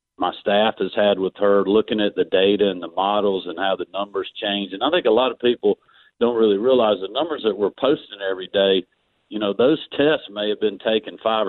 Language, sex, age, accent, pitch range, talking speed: English, male, 50-69, American, 100-125 Hz, 230 wpm